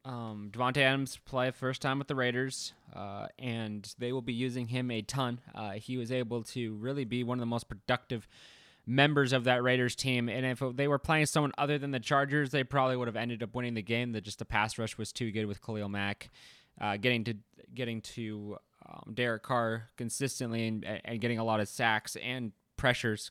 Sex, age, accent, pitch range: male, 20-39, American, 110-130 Hz